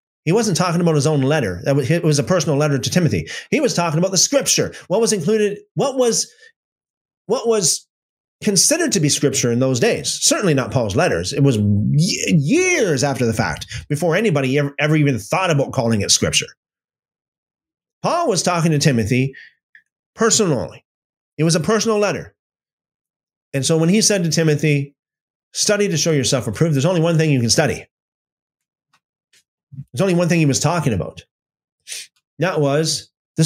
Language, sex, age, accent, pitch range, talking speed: English, male, 30-49, American, 130-175 Hz, 170 wpm